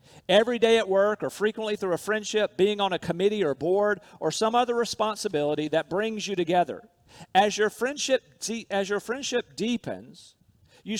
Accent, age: American, 50-69